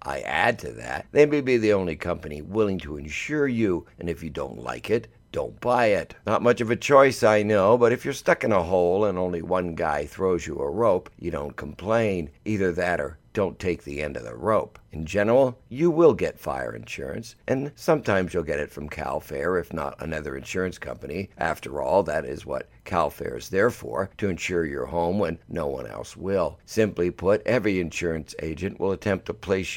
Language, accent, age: English, American, 60-79